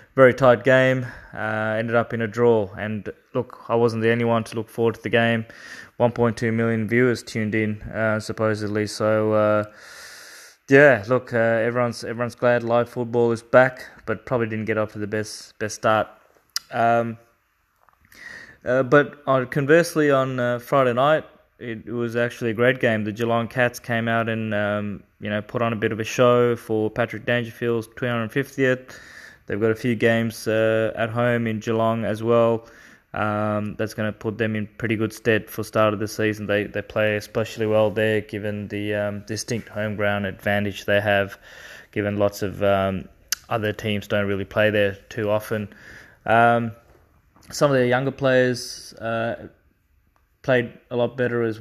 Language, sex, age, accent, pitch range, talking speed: English, male, 20-39, Australian, 105-120 Hz, 185 wpm